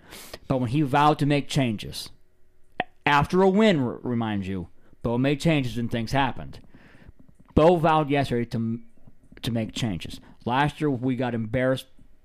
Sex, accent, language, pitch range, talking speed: male, American, English, 115-140 Hz, 155 wpm